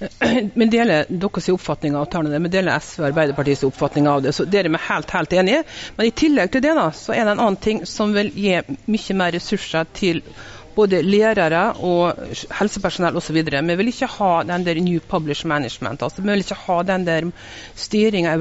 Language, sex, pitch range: English, female, 160-205 Hz